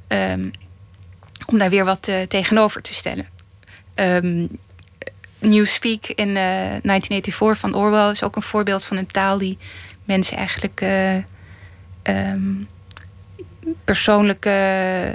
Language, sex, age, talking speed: Dutch, female, 20-39, 115 wpm